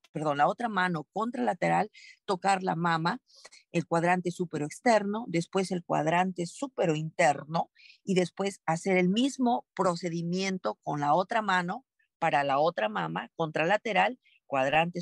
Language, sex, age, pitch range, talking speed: Spanish, female, 50-69, 155-210 Hz, 130 wpm